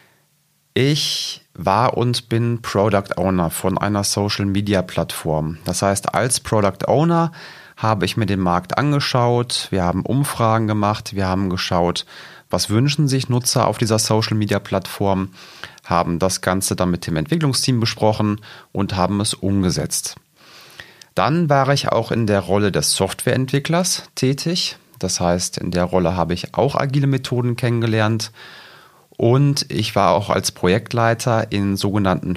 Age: 30-49